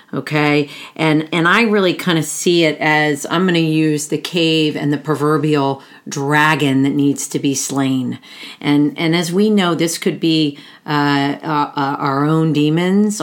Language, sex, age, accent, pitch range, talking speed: English, female, 40-59, American, 145-170 Hz, 170 wpm